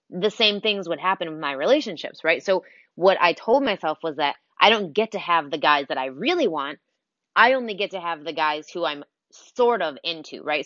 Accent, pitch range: American, 150-195 Hz